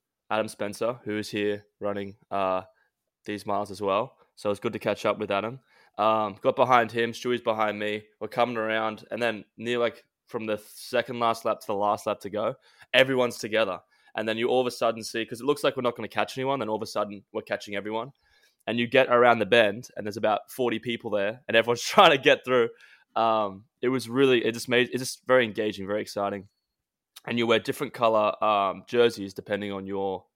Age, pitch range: 20-39, 100-120 Hz